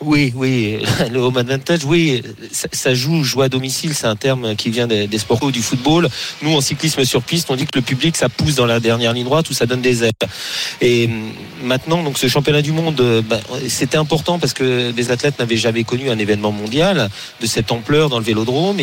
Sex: male